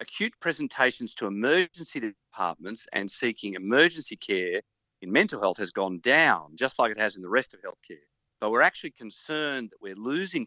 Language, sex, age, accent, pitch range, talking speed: English, male, 40-59, Australian, 110-160 Hz, 180 wpm